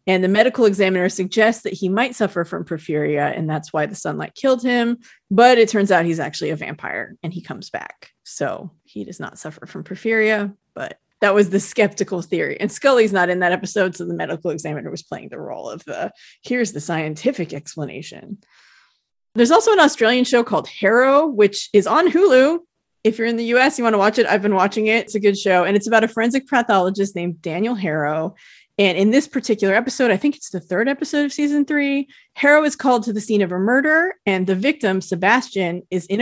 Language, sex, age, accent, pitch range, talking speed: English, female, 30-49, American, 185-245 Hz, 215 wpm